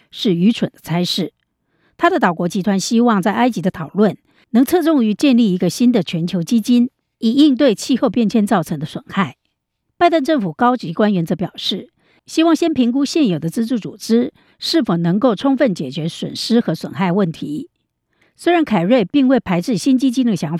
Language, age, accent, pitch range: Chinese, 50-69, American, 185-255 Hz